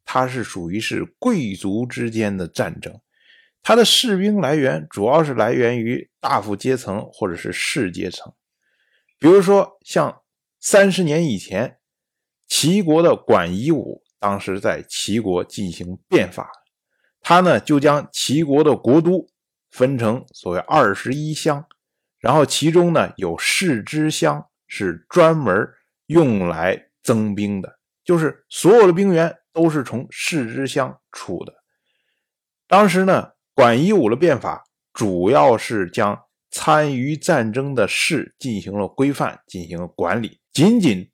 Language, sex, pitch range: Chinese, male, 105-165 Hz